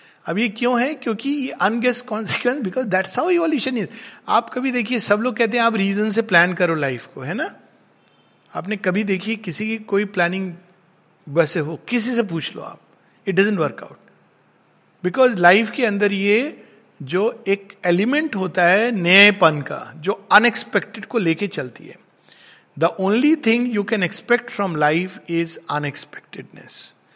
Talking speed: 160 wpm